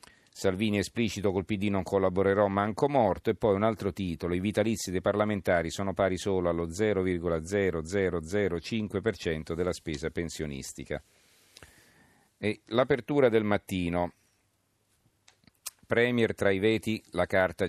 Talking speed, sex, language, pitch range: 120 wpm, male, Italian, 80-105 Hz